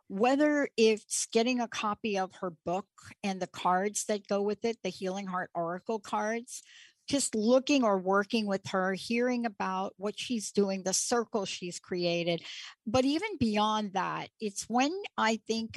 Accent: American